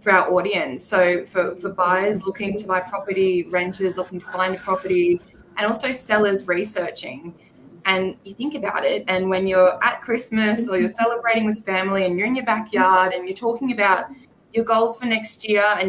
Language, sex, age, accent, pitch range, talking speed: English, female, 20-39, Australian, 180-230 Hz, 195 wpm